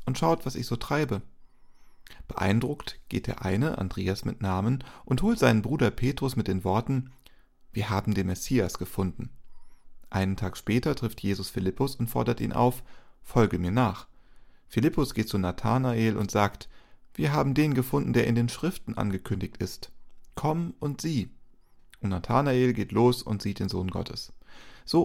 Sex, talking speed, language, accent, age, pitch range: male, 165 wpm, German, German, 40-59, 100-130 Hz